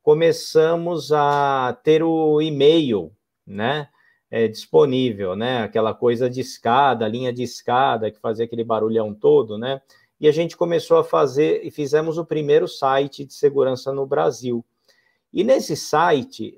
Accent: Brazilian